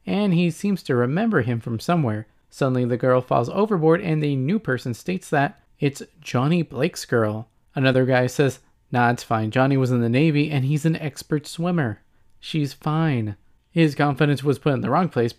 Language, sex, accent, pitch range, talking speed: English, male, American, 120-160 Hz, 190 wpm